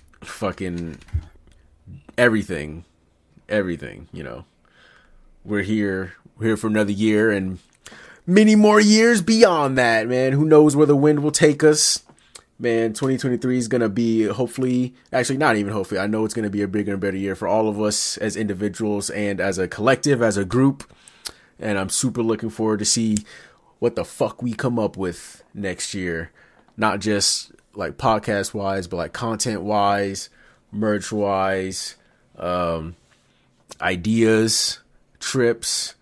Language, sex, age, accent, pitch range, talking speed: English, male, 30-49, American, 90-115 Hz, 150 wpm